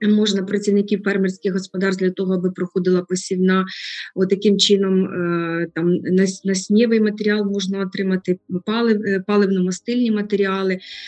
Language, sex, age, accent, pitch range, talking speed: Ukrainian, female, 20-39, native, 185-210 Hz, 115 wpm